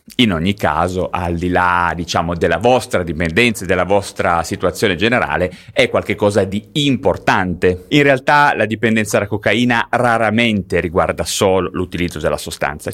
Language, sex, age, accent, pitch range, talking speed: Italian, male, 30-49, native, 100-150 Hz, 145 wpm